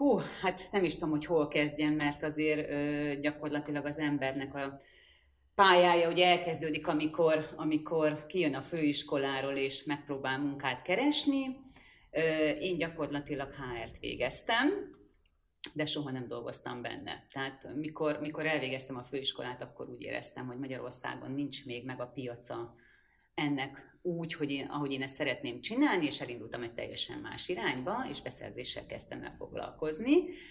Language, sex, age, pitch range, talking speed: Hungarian, female, 30-49, 135-170 Hz, 145 wpm